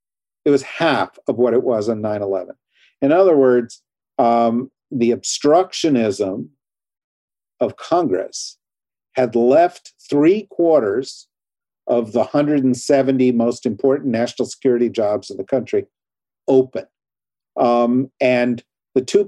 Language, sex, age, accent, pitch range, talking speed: English, male, 50-69, American, 115-140 Hz, 120 wpm